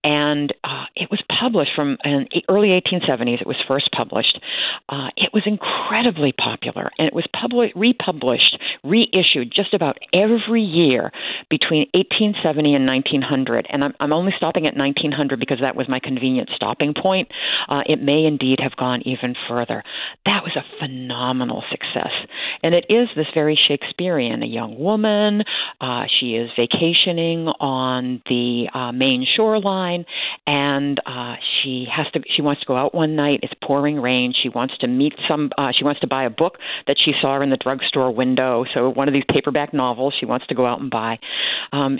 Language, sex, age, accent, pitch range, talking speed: English, female, 50-69, American, 130-160 Hz, 180 wpm